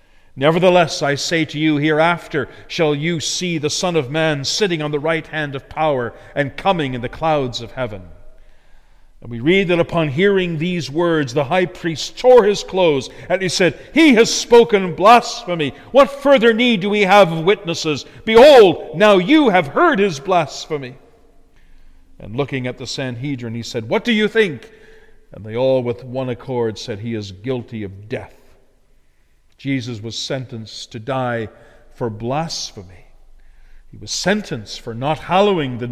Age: 50-69